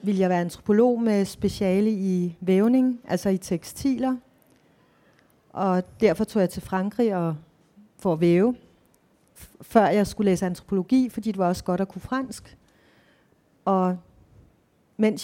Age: 40-59